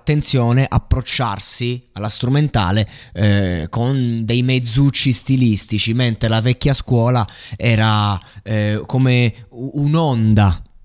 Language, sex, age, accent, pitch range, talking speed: Italian, male, 20-39, native, 105-130 Hz, 95 wpm